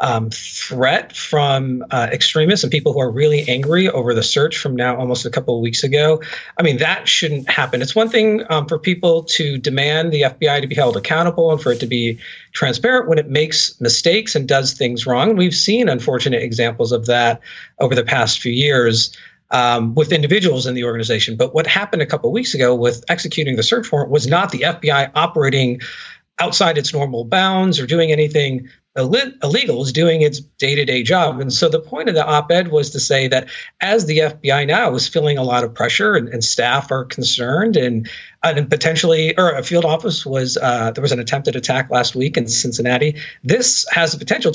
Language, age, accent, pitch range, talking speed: English, 40-59, American, 125-165 Hz, 205 wpm